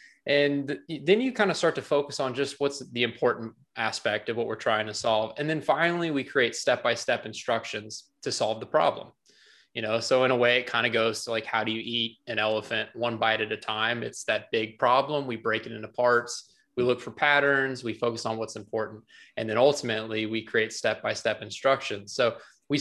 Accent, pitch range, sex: American, 110-140 Hz, male